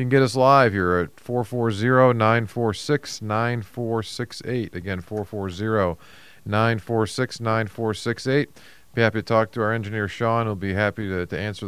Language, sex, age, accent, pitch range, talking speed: English, male, 40-59, American, 100-120 Hz, 125 wpm